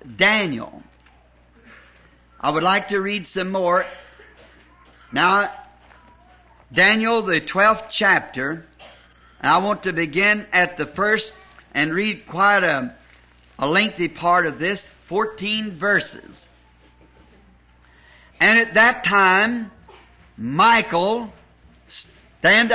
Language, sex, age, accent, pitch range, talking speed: English, male, 50-69, American, 140-220 Hz, 100 wpm